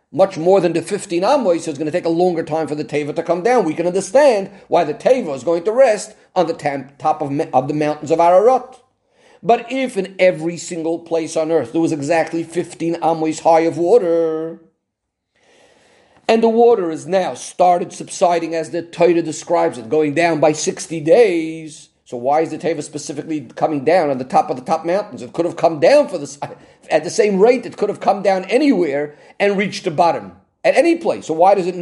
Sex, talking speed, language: male, 215 wpm, English